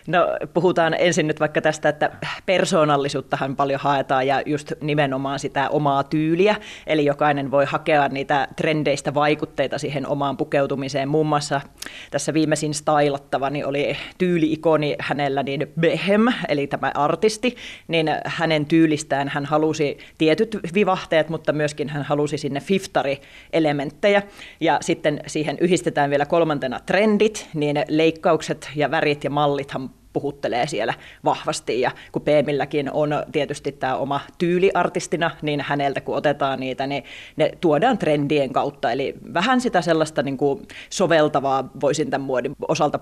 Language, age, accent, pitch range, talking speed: Finnish, 30-49, native, 140-160 Hz, 135 wpm